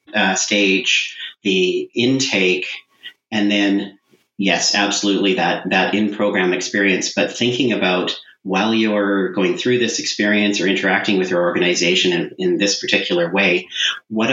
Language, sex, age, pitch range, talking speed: English, male, 40-59, 95-110 Hz, 135 wpm